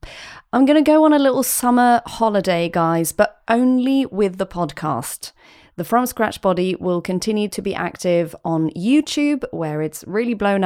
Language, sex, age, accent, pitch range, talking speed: English, female, 30-49, British, 165-215 Hz, 170 wpm